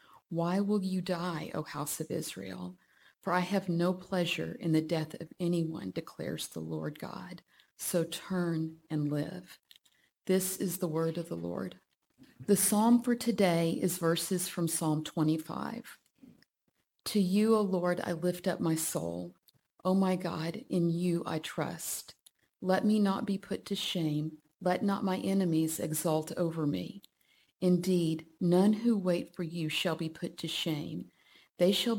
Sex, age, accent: female, 50-69, American